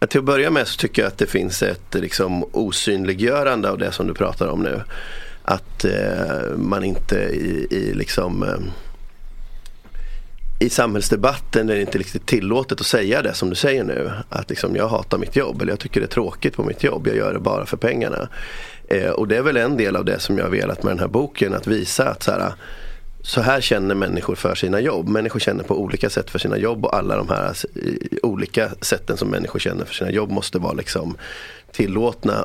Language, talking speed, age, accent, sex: English, 215 wpm, 30-49, Swedish, male